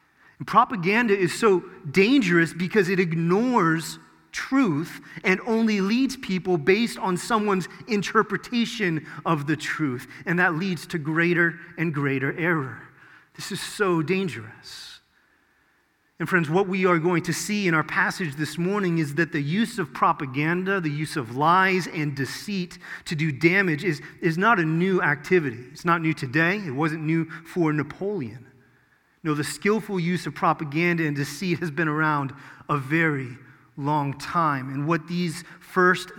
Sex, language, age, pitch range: male, English, 30-49, 150-185 Hz